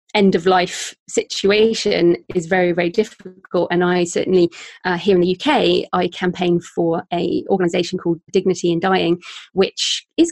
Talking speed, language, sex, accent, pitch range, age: 155 wpm, English, female, British, 180-225 Hz, 30-49